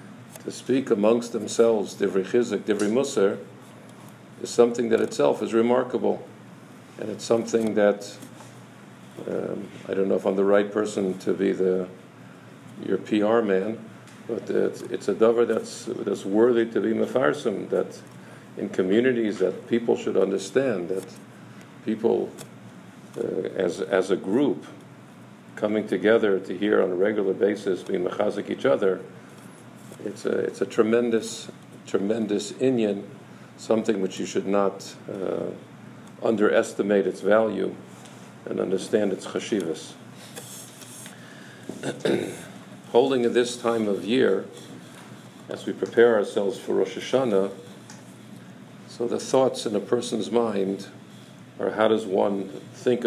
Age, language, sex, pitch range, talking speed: 50-69, English, male, 95-115 Hz, 130 wpm